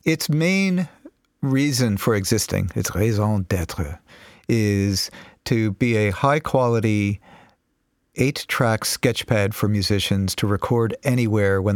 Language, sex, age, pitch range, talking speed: English, male, 50-69, 95-115 Hz, 110 wpm